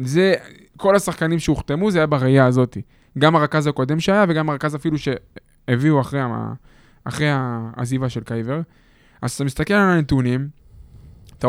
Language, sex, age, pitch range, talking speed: Hebrew, male, 20-39, 125-160 Hz, 135 wpm